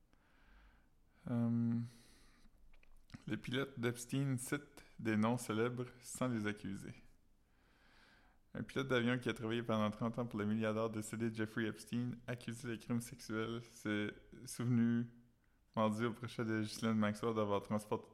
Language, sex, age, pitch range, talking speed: French, male, 20-39, 110-120 Hz, 140 wpm